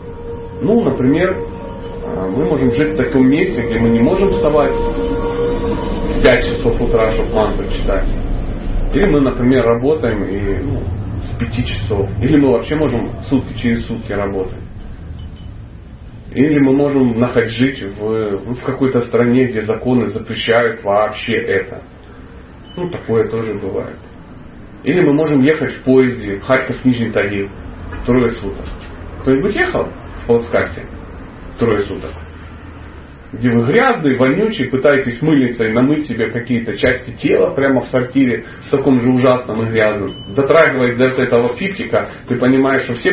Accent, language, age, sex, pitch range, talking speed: native, Russian, 30-49, male, 95-130 Hz, 140 wpm